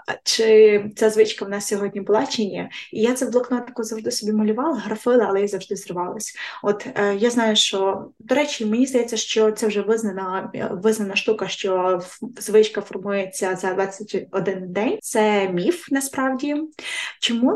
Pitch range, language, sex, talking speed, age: 195-230 Hz, Ukrainian, female, 155 wpm, 20-39